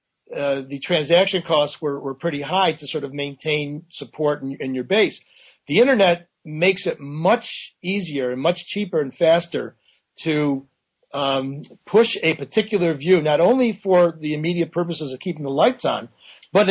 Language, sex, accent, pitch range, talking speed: English, male, American, 140-175 Hz, 165 wpm